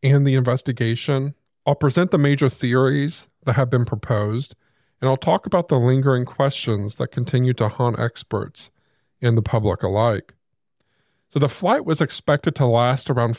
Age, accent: 40-59, American